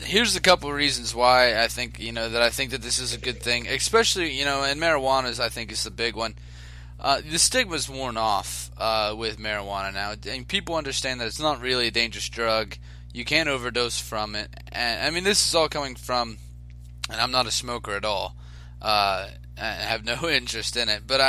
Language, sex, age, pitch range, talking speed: English, male, 20-39, 95-135 Hz, 220 wpm